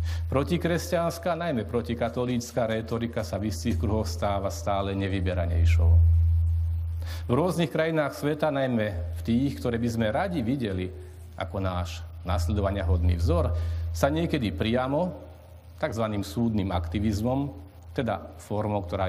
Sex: male